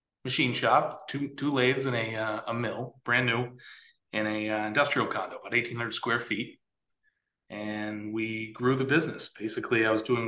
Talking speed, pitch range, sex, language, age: 180 wpm, 110-140 Hz, male, English, 30-49